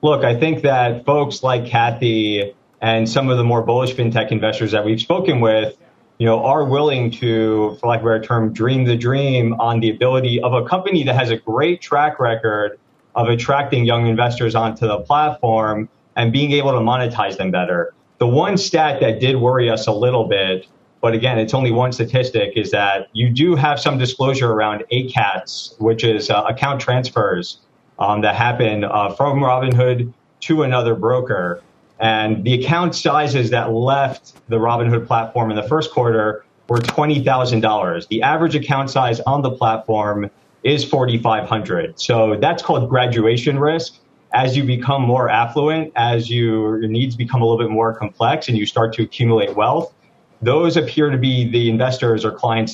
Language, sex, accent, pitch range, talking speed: English, male, American, 110-135 Hz, 175 wpm